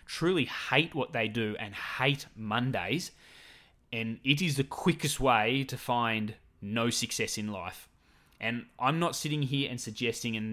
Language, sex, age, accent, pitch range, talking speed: English, male, 20-39, Australian, 110-140 Hz, 160 wpm